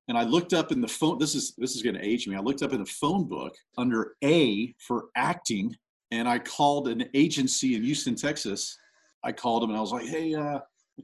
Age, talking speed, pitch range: 40-59, 240 wpm, 115-175 Hz